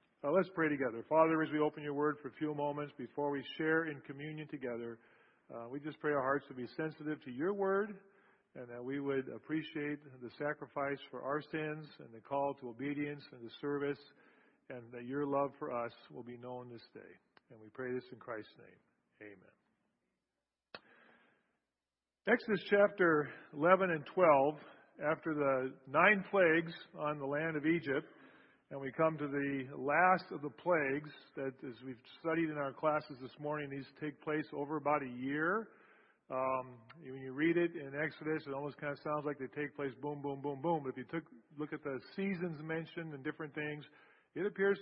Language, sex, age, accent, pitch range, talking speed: English, male, 40-59, American, 135-155 Hz, 190 wpm